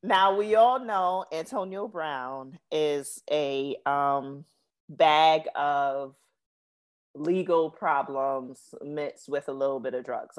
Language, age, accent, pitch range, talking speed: English, 30-49, American, 140-190 Hz, 115 wpm